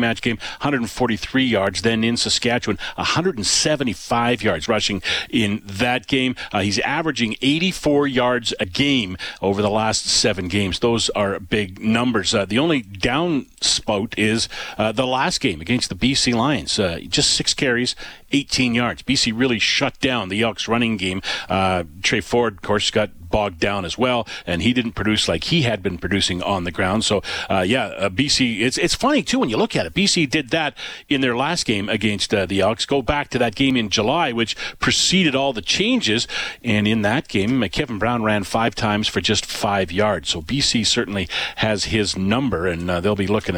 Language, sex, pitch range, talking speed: English, male, 100-125 Hz, 190 wpm